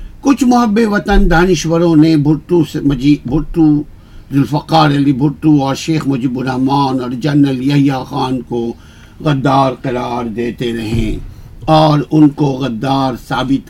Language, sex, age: Urdu, male, 60-79